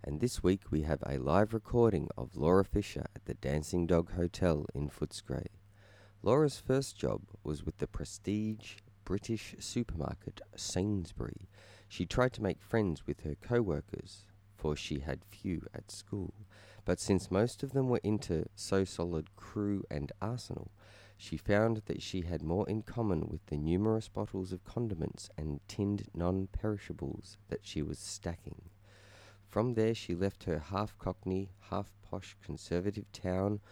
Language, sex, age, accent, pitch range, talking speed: English, male, 30-49, Australian, 85-105 Hz, 150 wpm